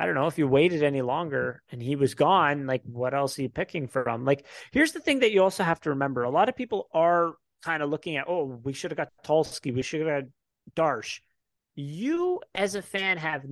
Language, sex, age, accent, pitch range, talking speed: English, male, 30-49, American, 145-220 Hz, 245 wpm